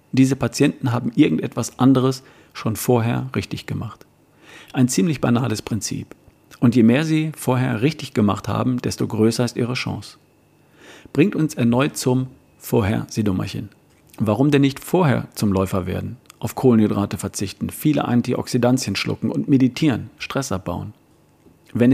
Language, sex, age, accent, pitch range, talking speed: German, male, 50-69, German, 105-135 Hz, 135 wpm